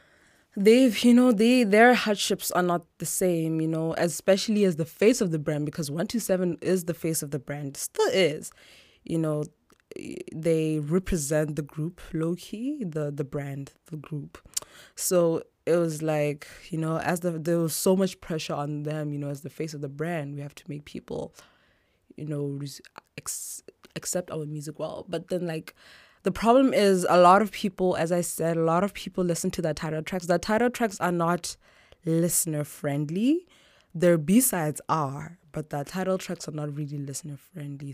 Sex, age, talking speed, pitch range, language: female, 20-39, 180 wpm, 150-185 Hz, English